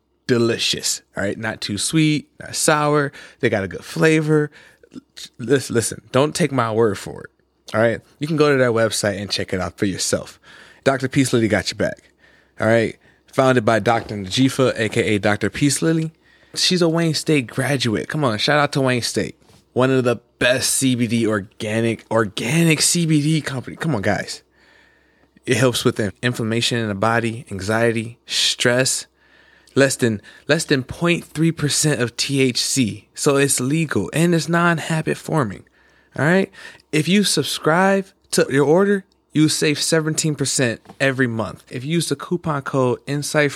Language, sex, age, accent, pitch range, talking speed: English, male, 20-39, American, 115-160 Hz, 165 wpm